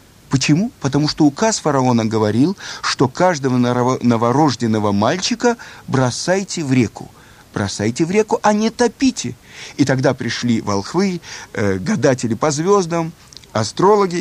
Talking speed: 115 wpm